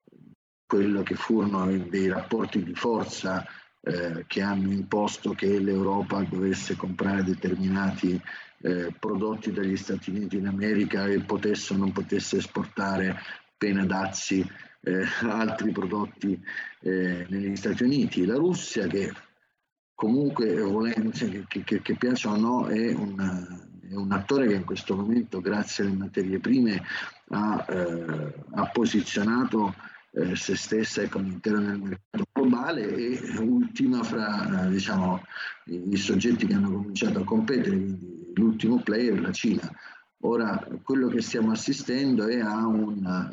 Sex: male